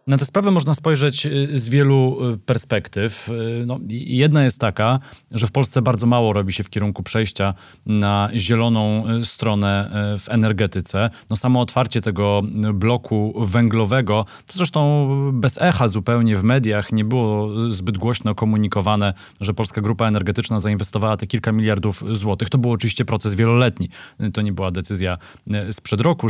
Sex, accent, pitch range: male, native, 105-120 Hz